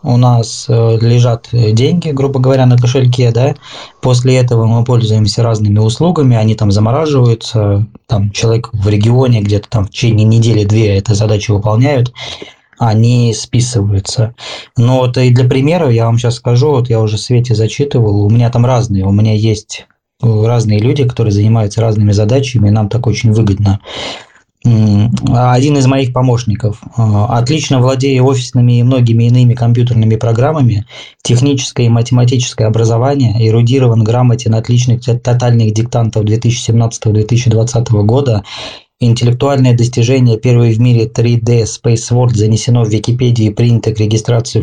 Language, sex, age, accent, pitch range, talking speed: Russian, male, 20-39, native, 110-125 Hz, 140 wpm